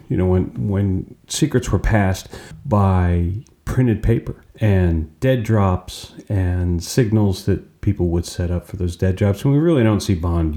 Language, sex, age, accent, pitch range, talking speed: English, male, 40-59, American, 85-105 Hz, 170 wpm